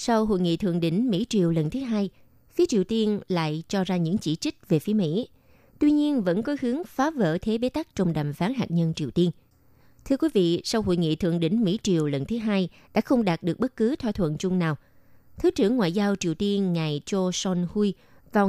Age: 20-39